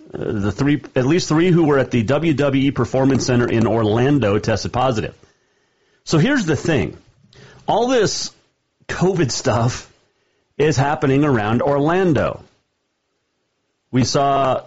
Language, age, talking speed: English, 40-59, 125 wpm